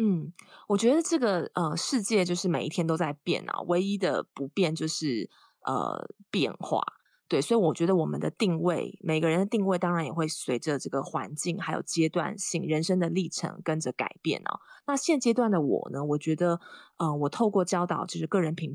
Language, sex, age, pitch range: Chinese, female, 20-39, 160-195 Hz